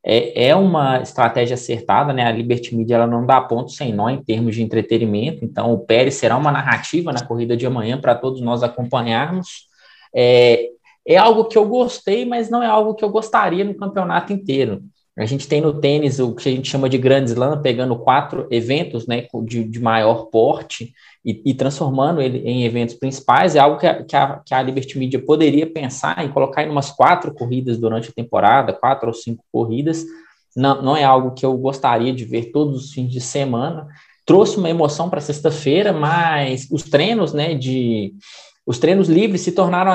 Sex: male